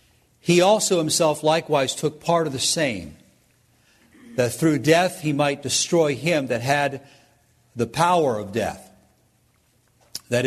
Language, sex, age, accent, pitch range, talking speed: English, male, 50-69, American, 120-155 Hz, 130 wpm